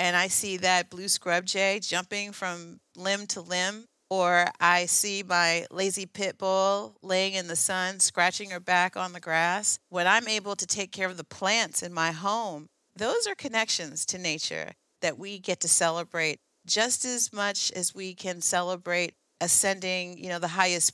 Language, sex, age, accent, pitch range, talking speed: English, female, 40-59, American, 175-205 Hz, 180 wpm